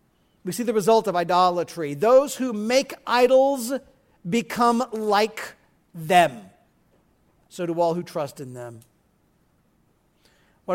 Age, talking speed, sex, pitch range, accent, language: 50-69, 115 wpm, male, 175-255 Hz, American, English